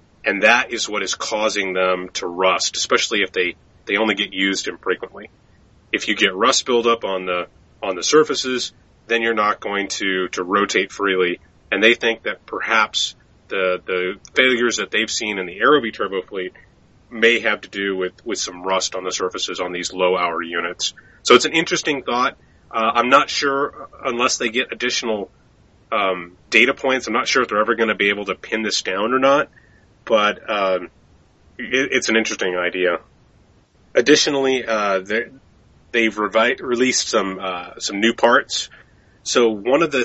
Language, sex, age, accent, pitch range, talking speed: English, male, 30-49, American, 90-115 Hz, 180 wpm